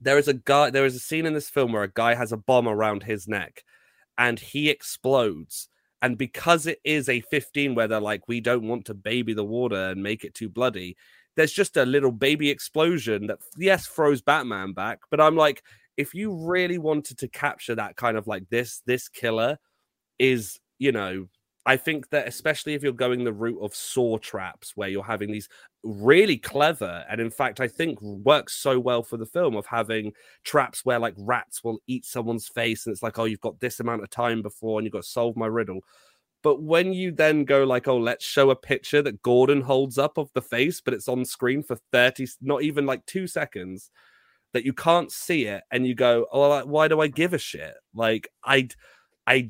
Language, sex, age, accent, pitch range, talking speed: English, male, 30-49, British, 115-145 Hz, 215 wpm